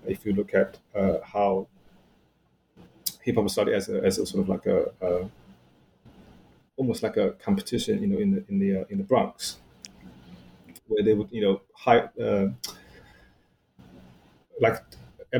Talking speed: 155 wpm